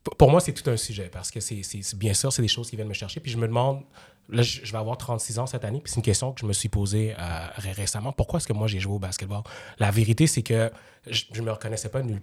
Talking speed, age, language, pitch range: 300 wpm, 30-49, French, 105-120 Hz